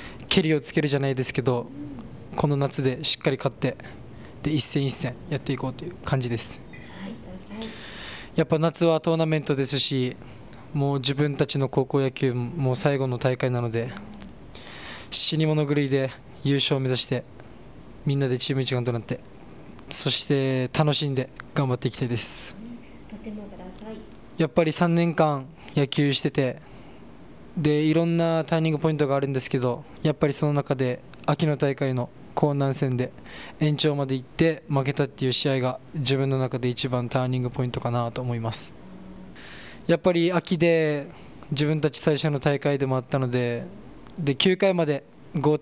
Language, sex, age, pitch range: Japanese, male, 20-39, 130-155 Hz